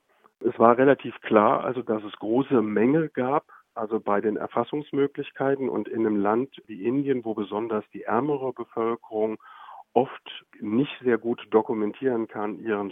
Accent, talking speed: German, 150 wpm